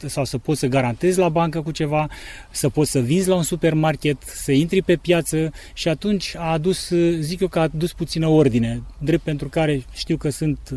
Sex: male